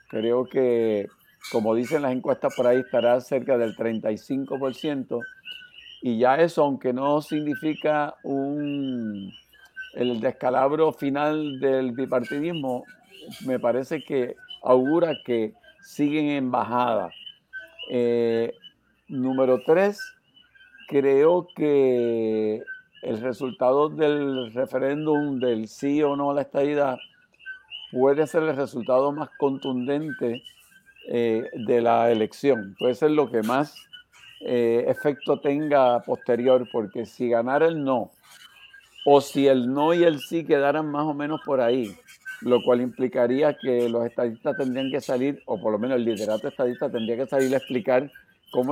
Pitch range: 125-150 Hz